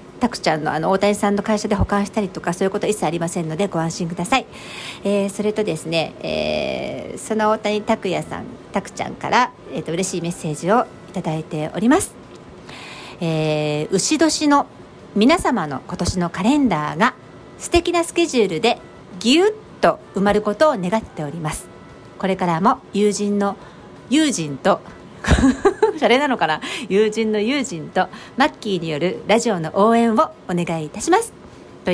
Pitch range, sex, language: 175-255 Hz, female, Japanese